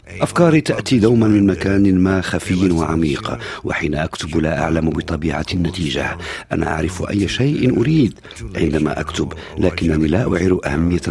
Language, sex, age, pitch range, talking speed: Arabic, male, 50-69, 80-105 Hz, 135 wpm